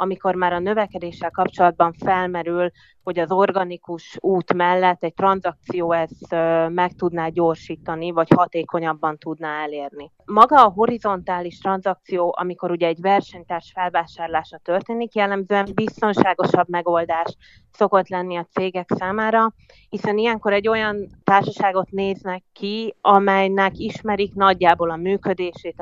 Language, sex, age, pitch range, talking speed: Hungarian, female, 30-49, 170-195 Hz, 120 wpm